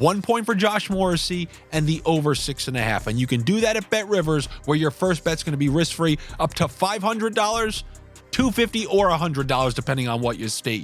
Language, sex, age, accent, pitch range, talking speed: English, male, 30-49, American, 125-175 Hz, 205 wpm